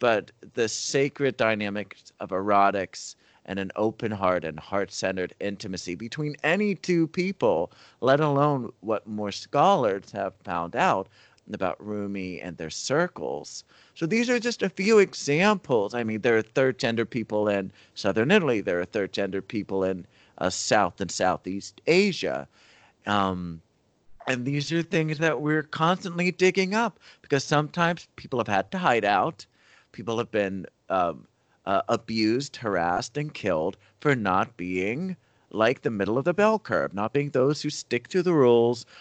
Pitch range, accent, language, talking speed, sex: 100-150 Hz, American, English, 155 wpm, male